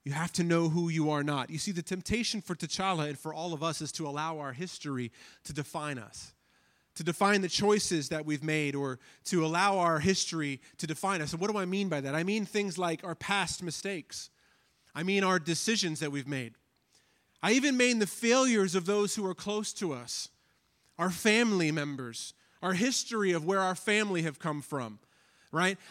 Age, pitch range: 30-49, 165-215 Hz